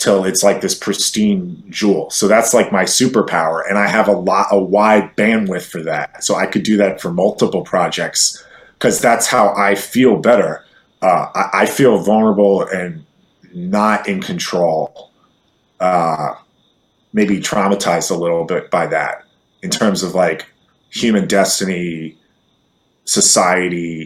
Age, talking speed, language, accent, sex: 30-49, 145 wpm, English, American, male